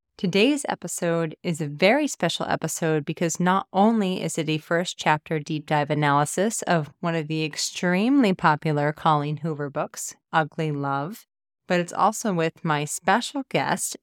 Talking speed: 155 wpm